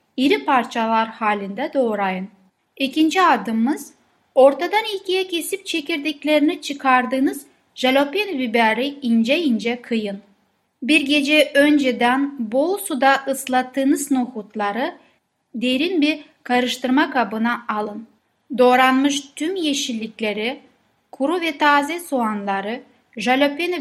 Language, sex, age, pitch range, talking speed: Turkish, female, 10-29, 230-290 Hz, 90 wpm